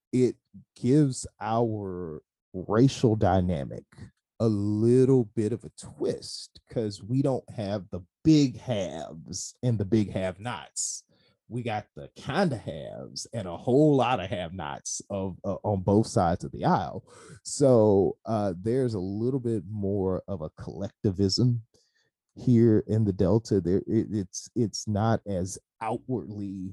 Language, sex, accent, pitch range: English, male, American, 95-120 Hz